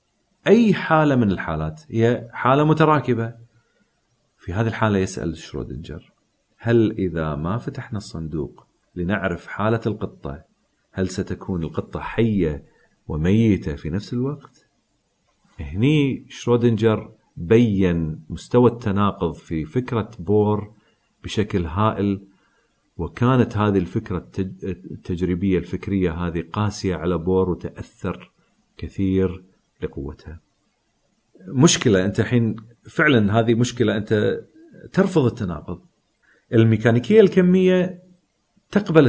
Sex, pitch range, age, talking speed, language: male, 90-120 Hz, 40-59, 95 wpm, Arabic